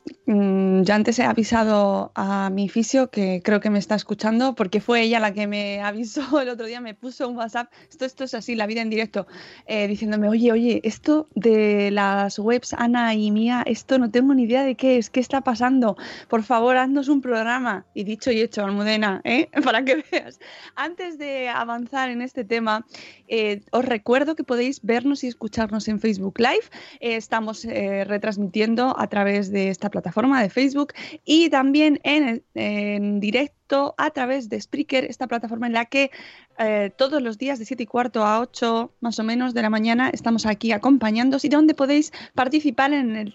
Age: 20-39